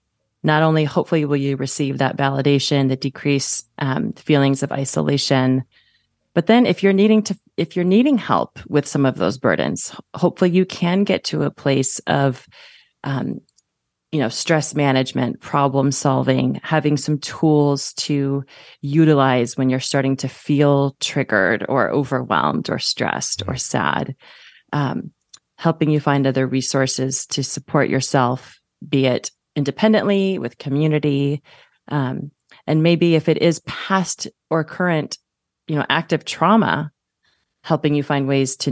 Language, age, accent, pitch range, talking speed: English, 30-49, American, 130-155 Hz, 145 wpm